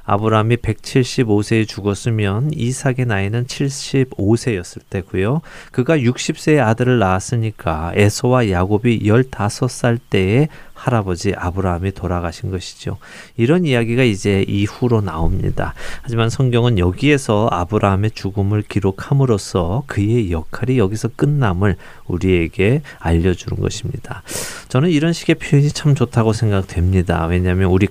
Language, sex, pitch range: Korean, male, 95-125 Hz